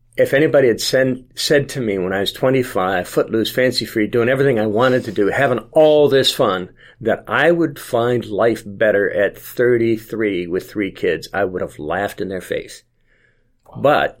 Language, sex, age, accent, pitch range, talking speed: English, male, 50-69, American, 105-130 Hz, 180 wpm